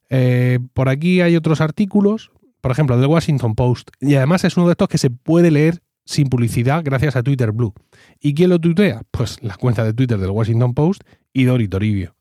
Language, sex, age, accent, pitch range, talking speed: Spanish, male, 30-49, Spanish, 110-160 Hz, 205 wpm